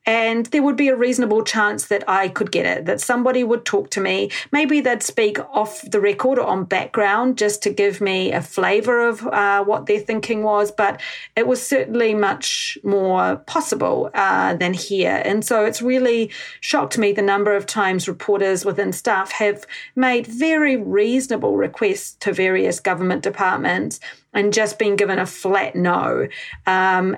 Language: English